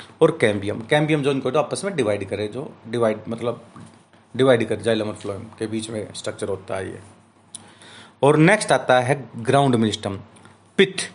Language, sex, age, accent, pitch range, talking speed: Hindi, male, 30-49, native, 110-175 Hz, 165 wpm